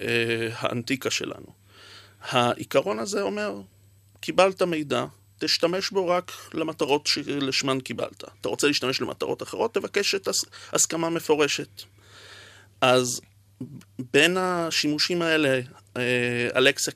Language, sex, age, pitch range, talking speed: Hebrew, male, 30-49, 120-145 Hz, 95 wpm